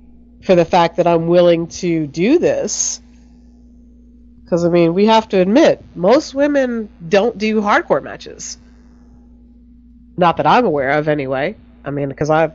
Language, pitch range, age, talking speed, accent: English, 165-240 Hz, 40-59, 150 wpm, American